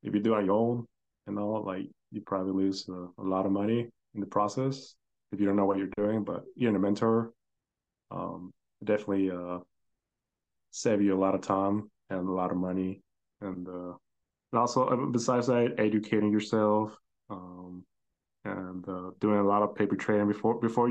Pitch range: 95-115 Hz